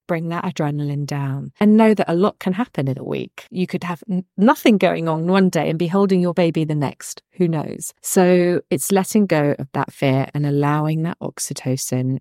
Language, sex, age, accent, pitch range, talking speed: English, female, 40-59, British, 150-195 Hz, 205 wpm